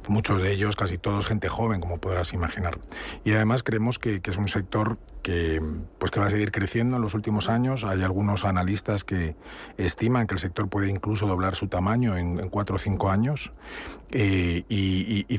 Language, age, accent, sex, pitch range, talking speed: Spanish, 40-59, Spanish, male, 95-110 Hz, 205 wpm